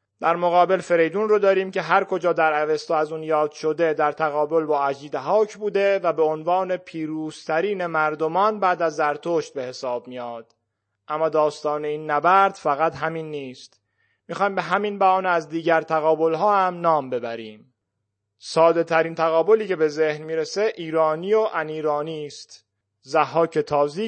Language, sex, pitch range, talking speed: Persian, male, 150-170 Hz, 155 wpm